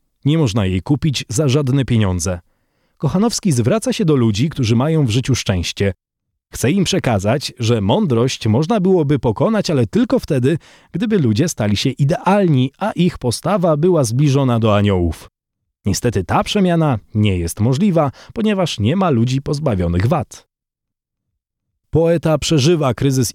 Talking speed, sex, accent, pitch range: 140 wpm, male, native, 110-155 Hz